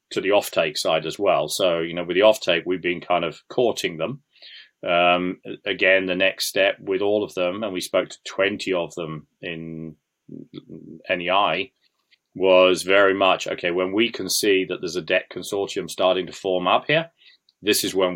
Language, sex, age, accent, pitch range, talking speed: English, male, 30-49, British, 90-95 Hz, 190 wpm